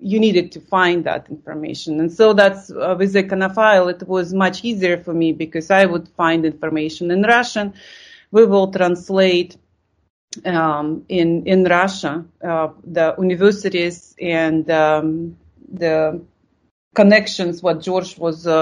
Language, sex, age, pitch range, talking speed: English, female, 30-49, 160-200 Hz, 145 wpm